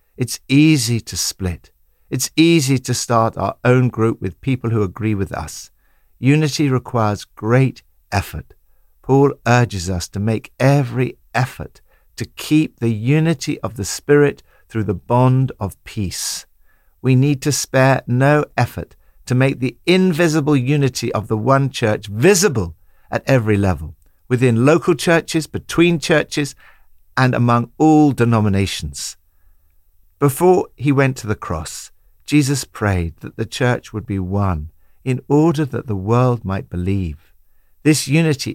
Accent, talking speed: British, 140 wpm